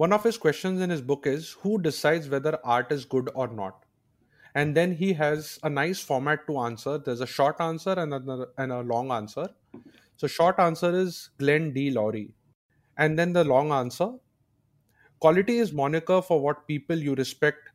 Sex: male